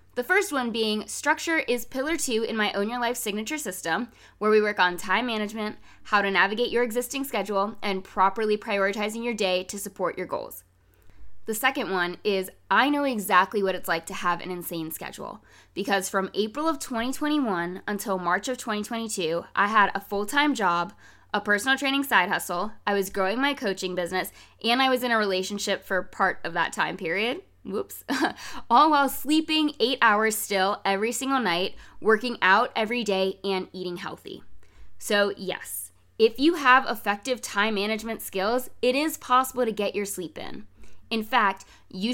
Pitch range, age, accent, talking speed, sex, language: 190-245 Hz, 20-39, American, 180 wpm, female, English